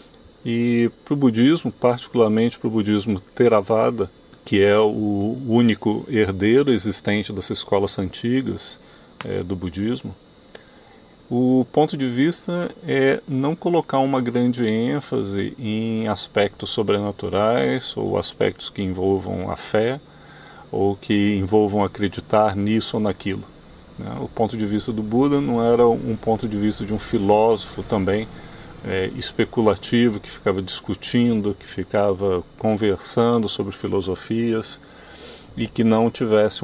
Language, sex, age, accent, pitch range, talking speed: Portuguese, male, 40-59, Brazilian, 100-120 Hz, 125 wpm